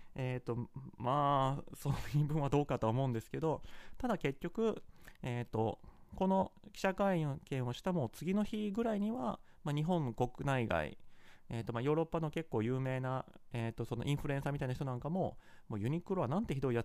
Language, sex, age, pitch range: Japanese, male, 30-49, 120-175 Hz